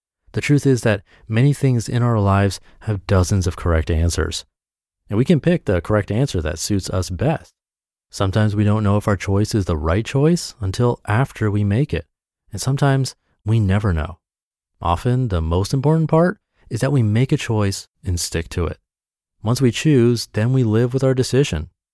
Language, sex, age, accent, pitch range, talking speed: English, male, 30-49, American, 85-120 Hz, 190 wpm